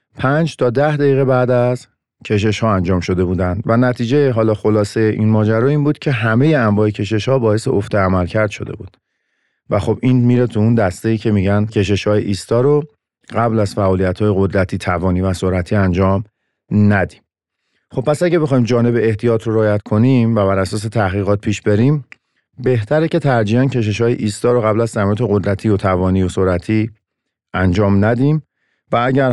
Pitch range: 100-125 Hz